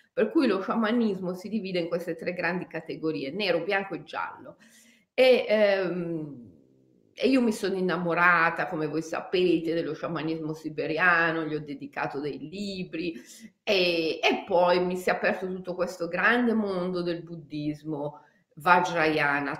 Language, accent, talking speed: Italian, native, 145 wpm